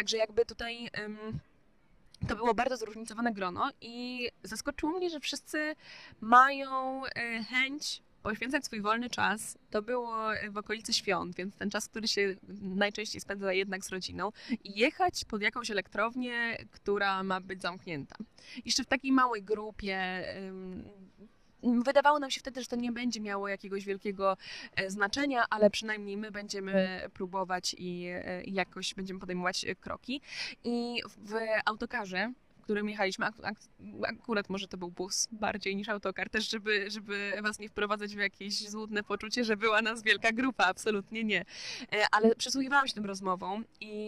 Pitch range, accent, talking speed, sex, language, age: 200-240 Hz, native, 145 wpm, female, Polish, 20-39